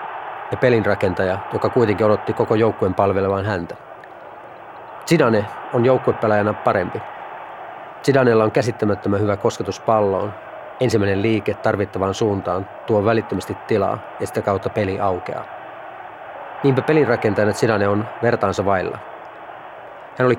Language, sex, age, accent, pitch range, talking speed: Finnish, male, 30-49, native, 100-120 Hz, 115 wpm